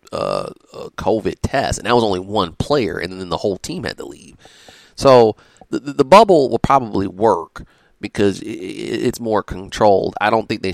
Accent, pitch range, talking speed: American, 95-115 Hz, 200 wpm